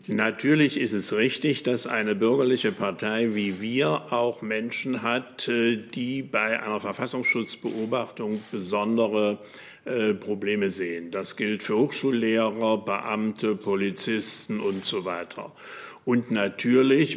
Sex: male